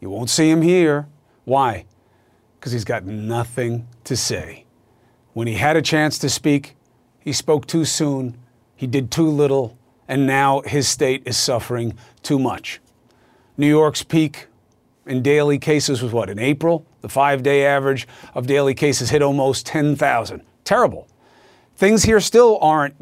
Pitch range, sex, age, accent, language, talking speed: 125-160 Hz, male, 40-59, American, English, 155 wpm